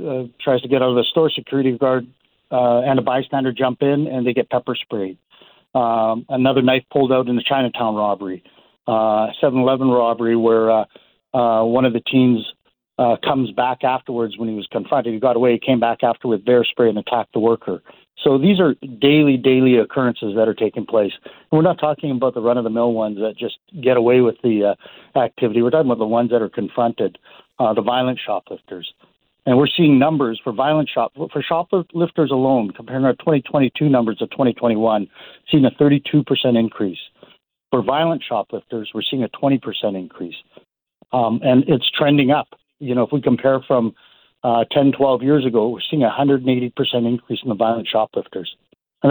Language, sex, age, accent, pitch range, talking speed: English, male, 60-79, American, 115-135 Hz, 185 wpm